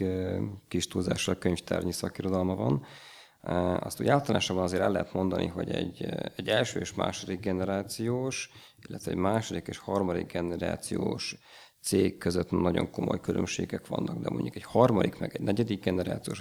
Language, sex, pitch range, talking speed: Hungarian, male, 90-110 Hz, 145 wpm